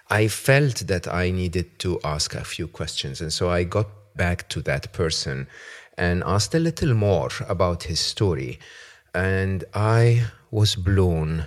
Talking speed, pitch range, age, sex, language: 155 wpm, 80-100 Hz, 40-59, male, English